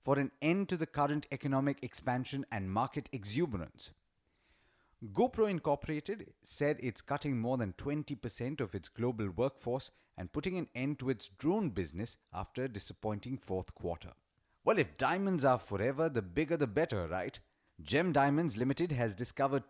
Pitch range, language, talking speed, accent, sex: 105-145 Hz, English, 155 wpm, Indian, male